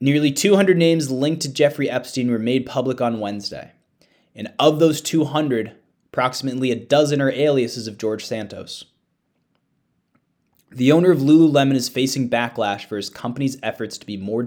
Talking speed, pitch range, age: 160 wpm, 115-145 Hz, 20-39